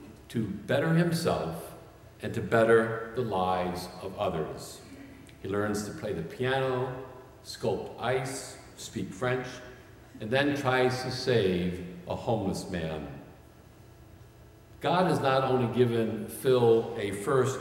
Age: 50-69